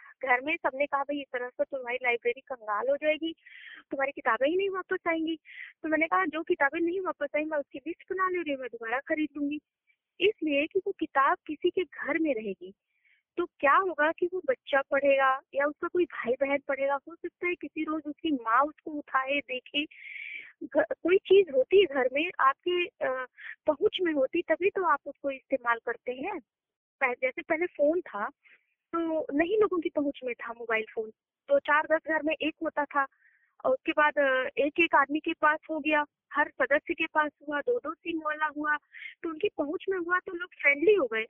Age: 20-39